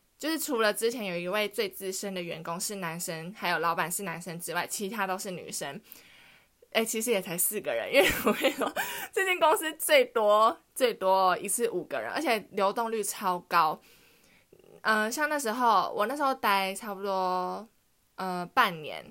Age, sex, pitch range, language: 20-39, female, 190-255 Hz, Chinese